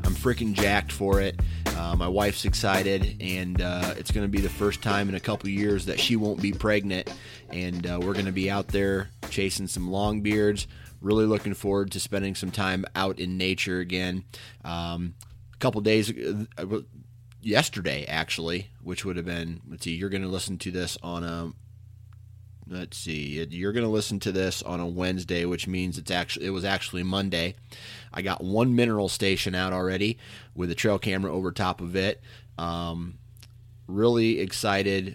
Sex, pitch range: male, 90-110 Hz